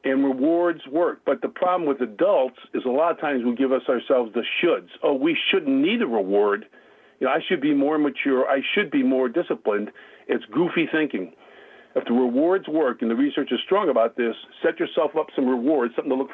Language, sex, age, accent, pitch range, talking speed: English, male, 50-69, American, 130-190 Hz, 215 wpm